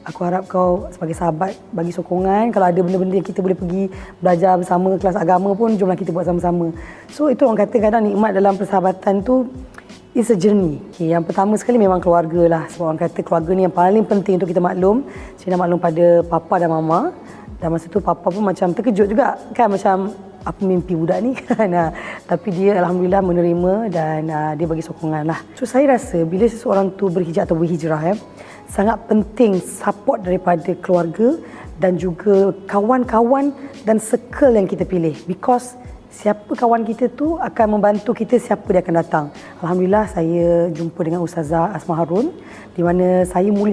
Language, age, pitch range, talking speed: Malay, 20-39, 175-215 Hz, 175 wpm